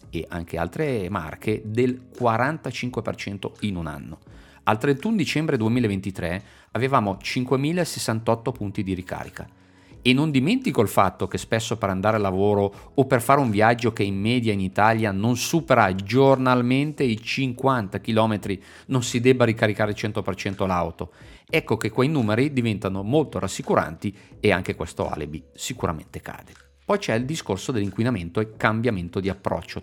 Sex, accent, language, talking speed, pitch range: male, native, Italian, 150 wpm, 95-125 Hz